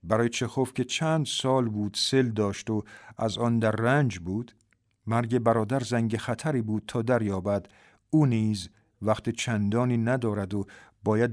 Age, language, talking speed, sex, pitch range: 50-69, Persian, 155 wpm, male, 105-125 Hz